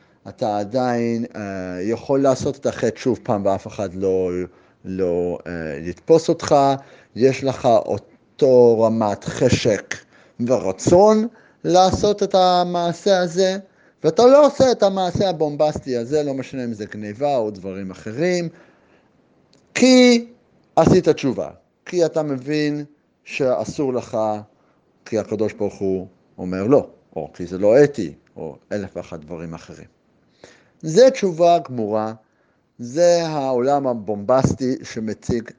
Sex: male